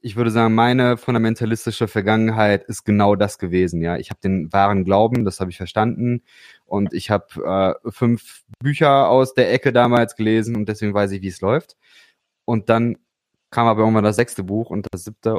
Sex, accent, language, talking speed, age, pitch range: male, German, German, 185 wpm, 20-39, 100-120 Hz